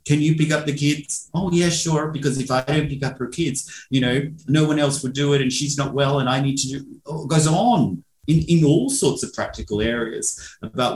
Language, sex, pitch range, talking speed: English, male, 120-150 Hz, 250 wpm